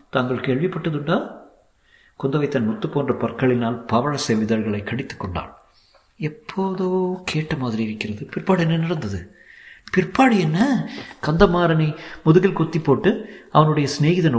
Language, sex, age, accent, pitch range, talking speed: Tamil, male, 50-69, native, 120-175 Hz, 105 wpm